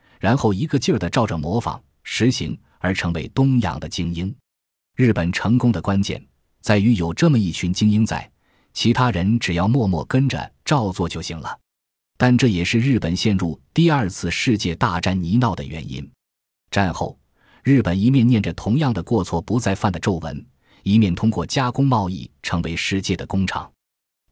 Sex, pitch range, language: male, 85-115 Hz, Chinese